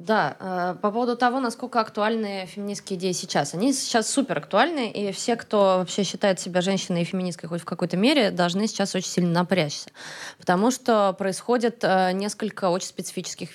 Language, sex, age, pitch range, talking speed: Russian, female, 20-39, 185-235 Hz, 175 wpm